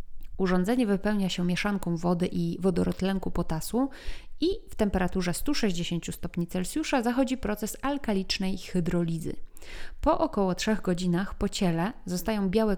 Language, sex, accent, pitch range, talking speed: Polish, female, native, 170-215 Hz, 120 wpm